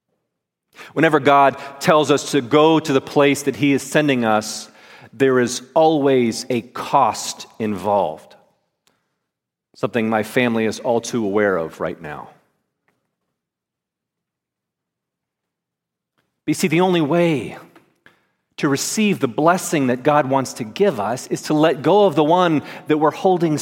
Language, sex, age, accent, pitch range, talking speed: English, male, 40-59, American, 140-190 Hz, 140 wpm